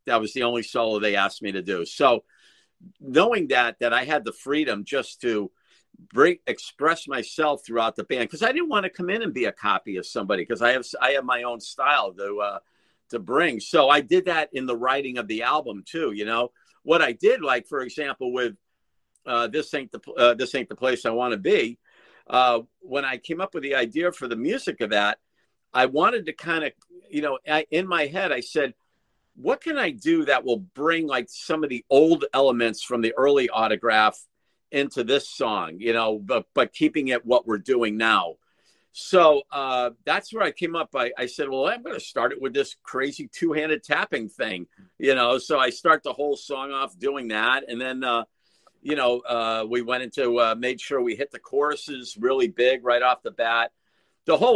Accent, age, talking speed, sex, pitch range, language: American, 50-69, 220 wpm, male, 120-165 Hz, English